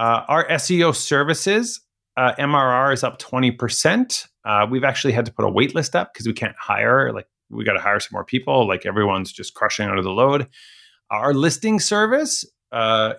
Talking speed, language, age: 190 wpm, English, 30-49